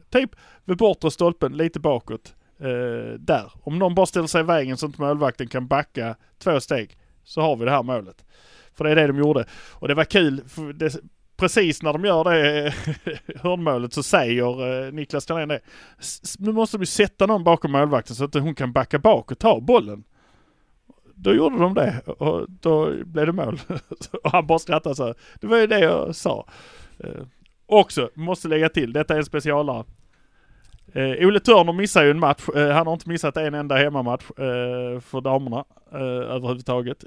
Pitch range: 130-170 Hz